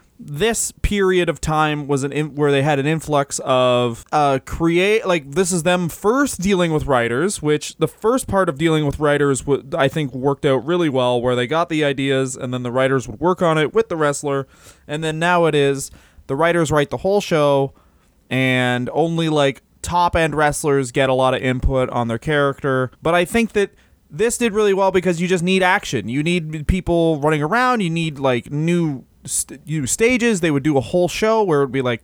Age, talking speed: 20-39, 215 wpm